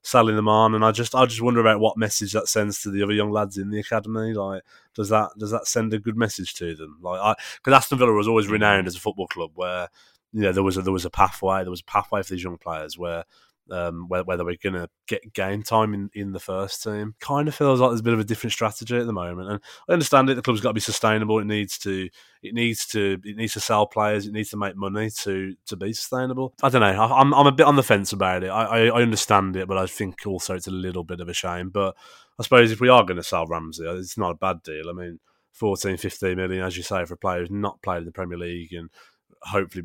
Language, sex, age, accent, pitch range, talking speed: English, male, 20-39, British, 90-110 Hz, 275 wpm